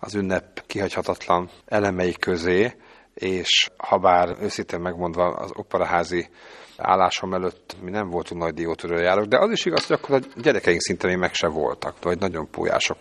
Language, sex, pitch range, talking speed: Hungarian, male, 85-100 Hz, 160 wpm